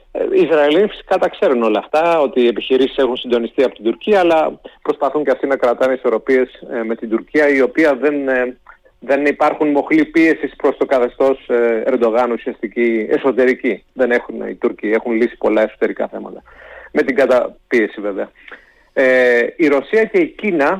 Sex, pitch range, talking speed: male, 120-155 Hz, 170 wpm